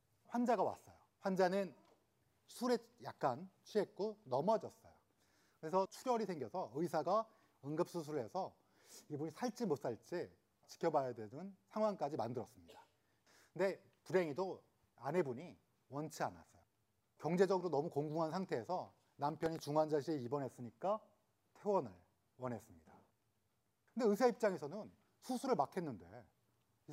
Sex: male